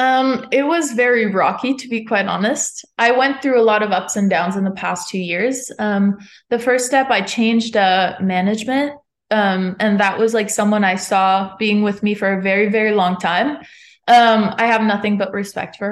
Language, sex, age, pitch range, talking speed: English, female, 20-39, 200-255 Hz, 205 wpm